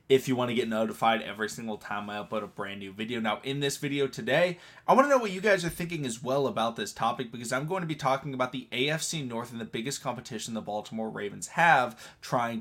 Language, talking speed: English, 250 wpm